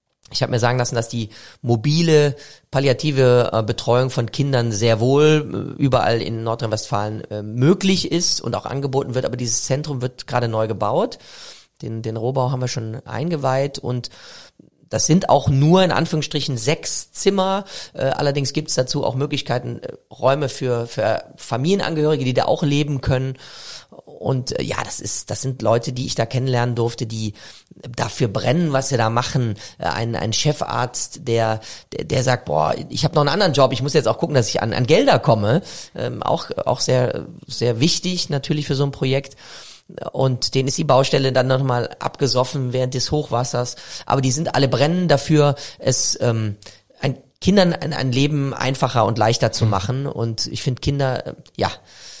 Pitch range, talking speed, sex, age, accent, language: 120-145 Hz, 170 wpm, male, 30-49, German, German